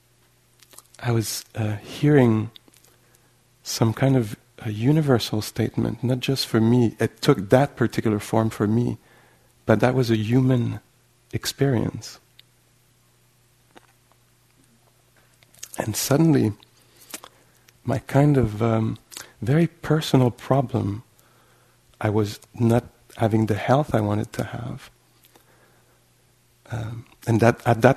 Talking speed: 105 wpm